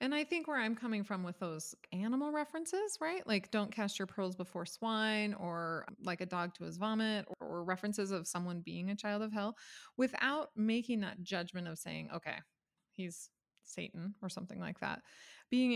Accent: American